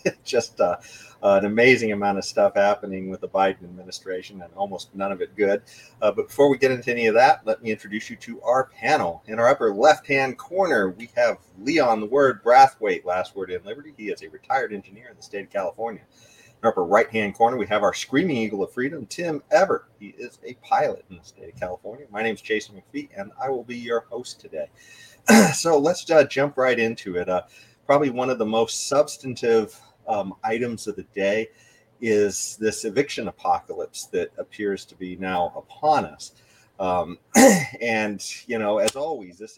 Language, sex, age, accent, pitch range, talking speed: English, male, 40-59, American, 100-135 Hz, 200 wpm